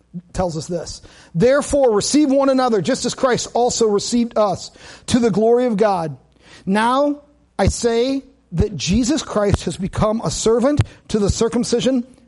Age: 50-69